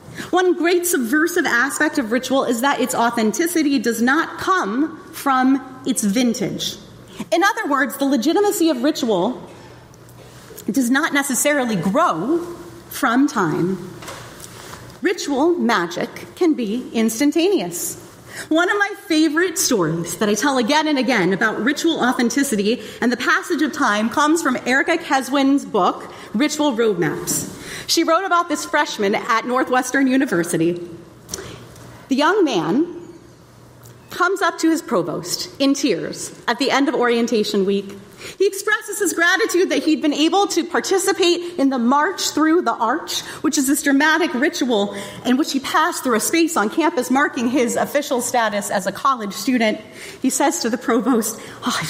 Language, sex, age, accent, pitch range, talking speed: English, female, 30-49, American, 230-320 Hz, 150 wpm